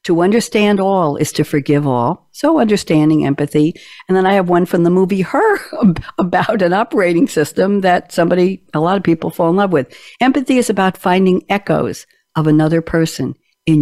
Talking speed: 180 wpm